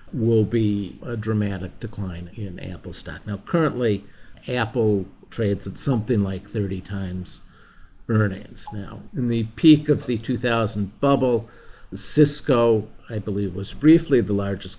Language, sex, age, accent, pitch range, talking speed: English, male, 50-69, American, 100-125 Hz, 135 wpm